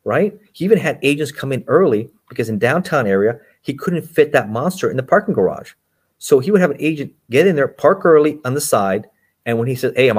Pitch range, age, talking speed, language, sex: 115-165 Hz, 30-49, 240 wpm, English, male